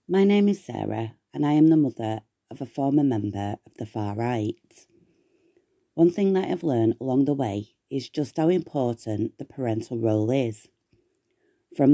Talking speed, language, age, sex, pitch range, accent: 170 wpm, English, 40-59, female, 130-185 Hz, British